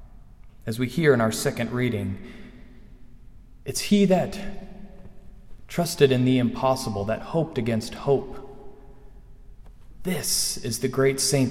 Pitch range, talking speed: 125-190 Hz, 120 wpm